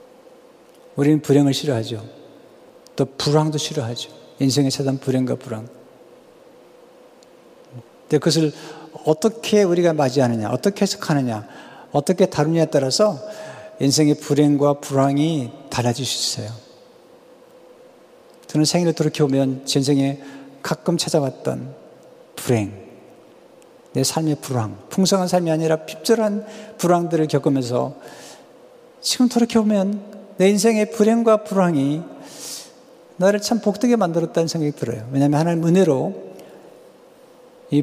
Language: French